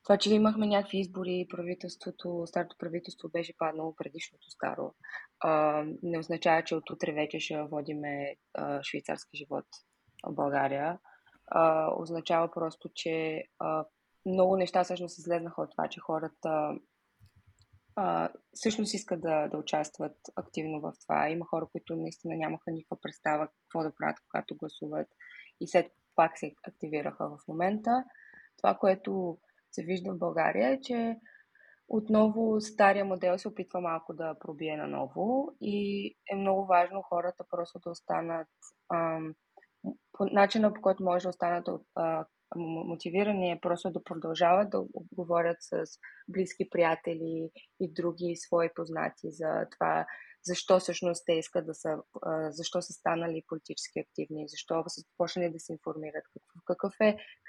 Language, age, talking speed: Bulgarian, 20-39, 145 wpm